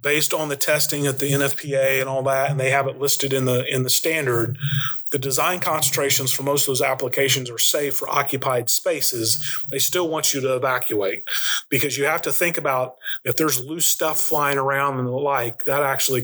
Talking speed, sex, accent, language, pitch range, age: 205 wpm, male, American, English, 125-150 Hz, 30-49